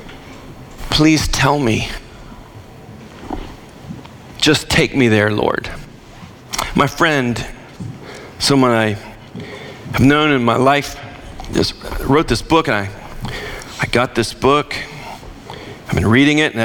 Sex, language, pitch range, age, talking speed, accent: male, English, 115-150 Hz, 40-59, 115 wpm, American